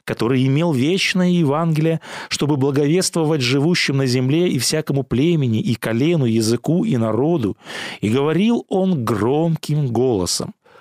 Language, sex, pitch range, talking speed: Russian, male, 125-170 Hz, 120 wpm